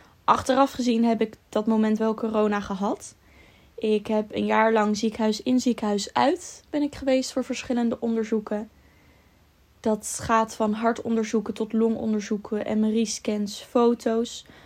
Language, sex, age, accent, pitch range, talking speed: Dutch, female, 10-29, Dutch, 215-240 Hz, 135 wpm